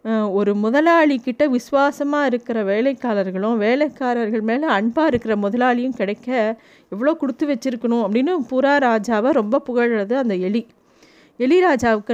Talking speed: 115 wpm